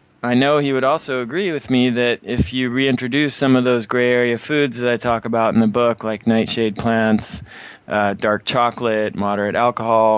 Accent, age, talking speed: American, 20-39, 195 wpm